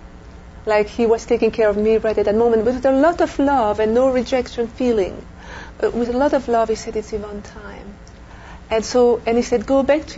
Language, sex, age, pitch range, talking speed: English, female, 40-59, 210-250 Hz, 230 wpm